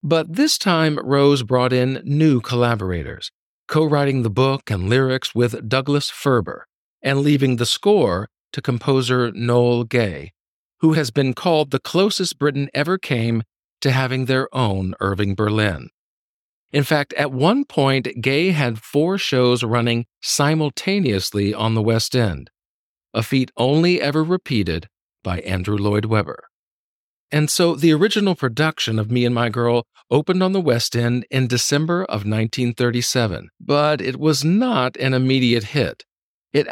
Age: 50-69